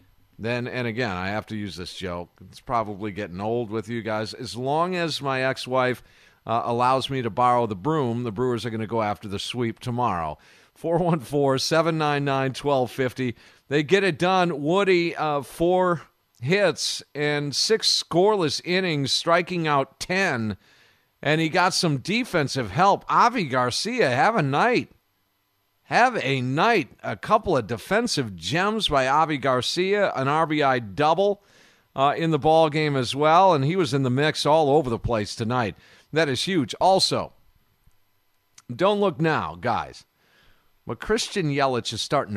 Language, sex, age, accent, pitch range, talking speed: English, male, 50-69, American, 110-160 Hz, 155 wpm